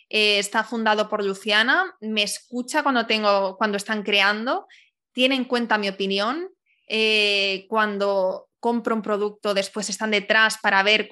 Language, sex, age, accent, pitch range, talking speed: Spanish, female, 20-39, Spanish, 205-255 Hz, 140 wpm